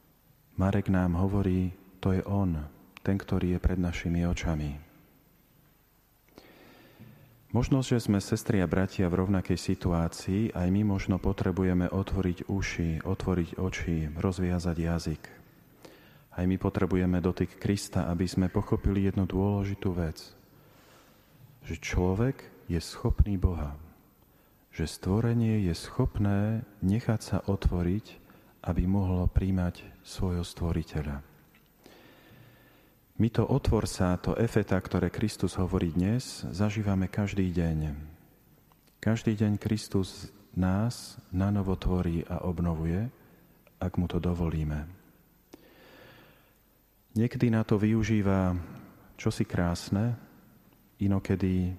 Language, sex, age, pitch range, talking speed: Slovak, male, 40-59, 90-100 Hz, 105 wpm